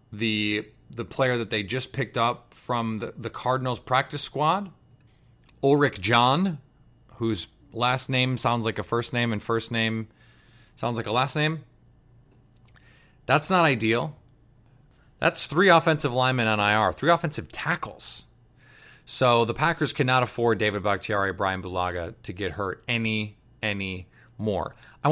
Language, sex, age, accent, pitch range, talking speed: English, male, 30-49, American, 110-135 Hz, 145 wpm